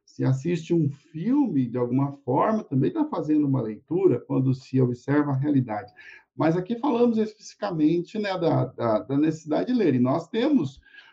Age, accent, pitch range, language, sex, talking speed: 50-69, Brazilian, 130-180 Hz, Portuguese, male, 160 wpm